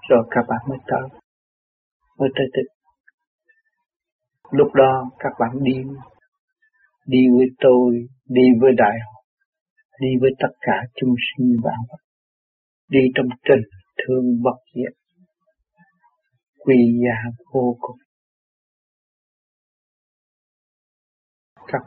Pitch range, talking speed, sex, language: 120-170 Hz, 105 wpm, male, Vietnamese